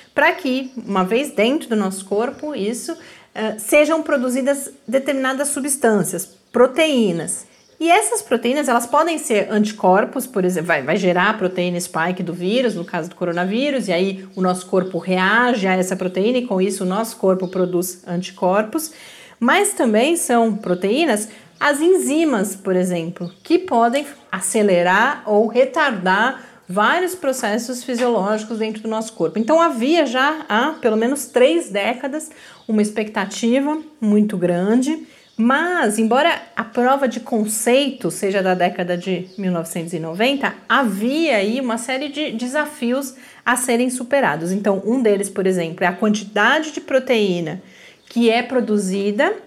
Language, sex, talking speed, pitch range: Portuguese, female, 140 wpm, 185-265 Hz